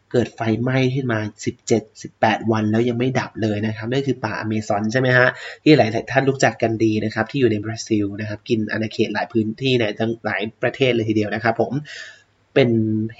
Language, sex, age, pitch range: Thai, male, 20-39, 110-125 Hz